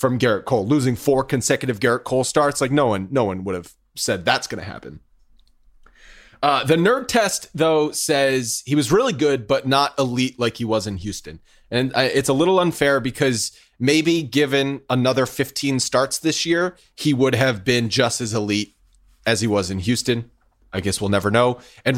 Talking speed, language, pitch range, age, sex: 190 wpm, English, 110-140 Hz, 30-49, male